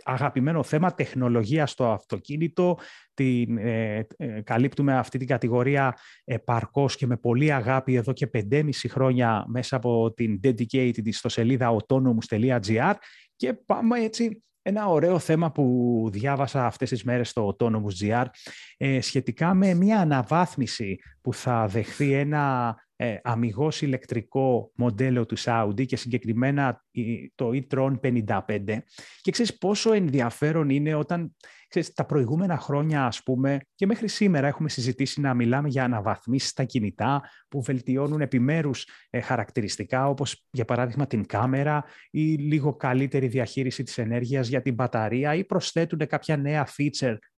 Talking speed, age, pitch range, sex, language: 135 wpm, 30-49, 120-150 Hz, male, Greek